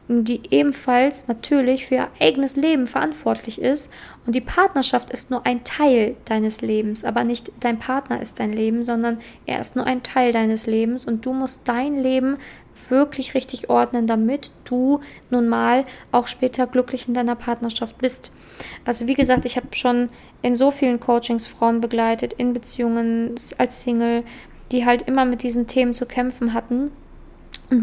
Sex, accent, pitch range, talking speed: female, German, 235-260 Hz, 170 wpm